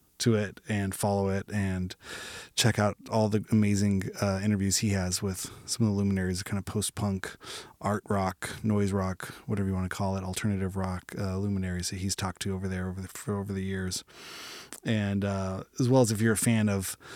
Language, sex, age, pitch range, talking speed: English, male, 20-39, 100-120 Hz, 205 wpm